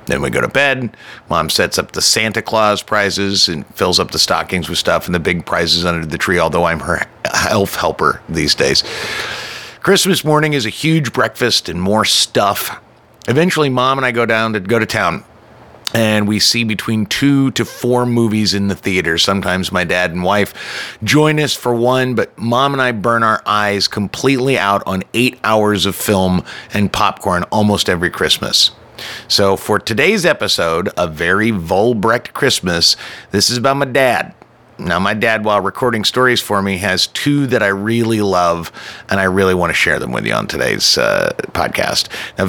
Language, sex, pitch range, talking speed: English, male, 100-125 Hz, 185 wpm